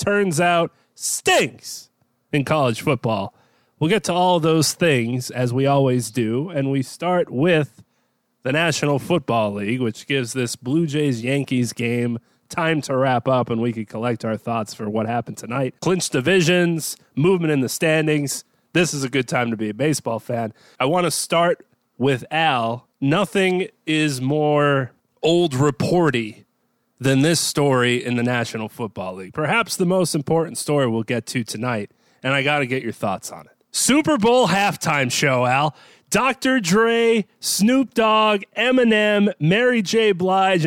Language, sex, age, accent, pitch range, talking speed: English, male, 30-49, American, 125-180 Hz, 165 wpm